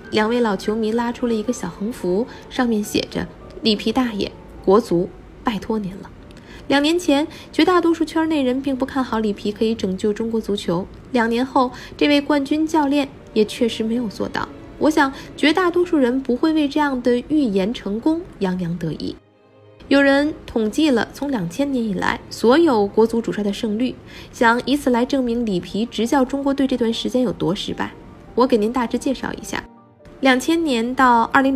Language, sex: Chinese, female